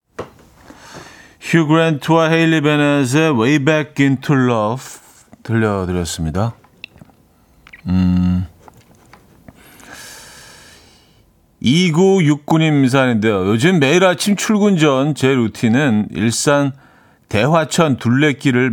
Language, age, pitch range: Korean, 40-59, 100-140 Hz